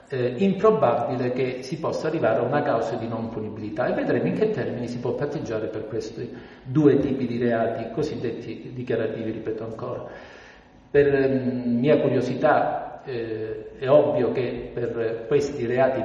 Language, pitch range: Italian, 115-135 Hz